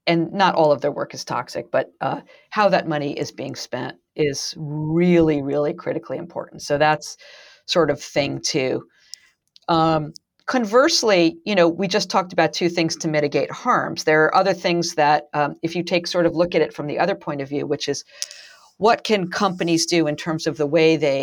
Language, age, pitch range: English, 50-69, 150-185 Hz